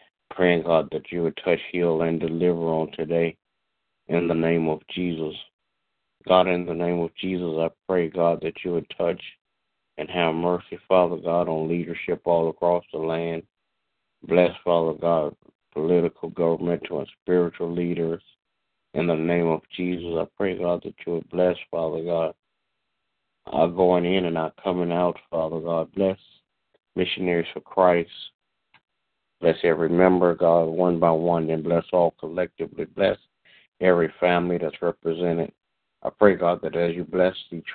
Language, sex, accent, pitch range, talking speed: English, male, American, 80-90 Hz, 155 wpm